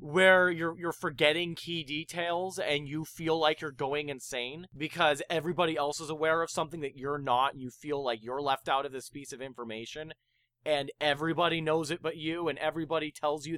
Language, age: English, 20-39